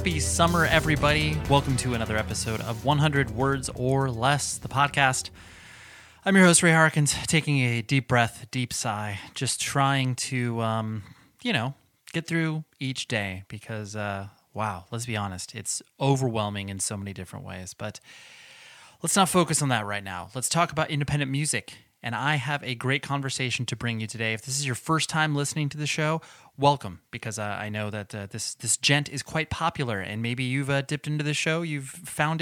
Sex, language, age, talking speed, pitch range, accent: male, English, 20-39, 190 wpm, 110-150 Hz, American